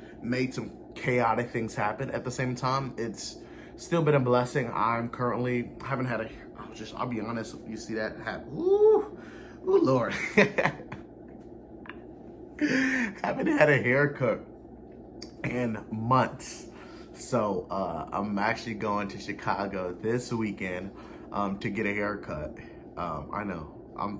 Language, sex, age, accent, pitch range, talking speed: English, male, 30-49, American, 100-125 Hz, 135 wpm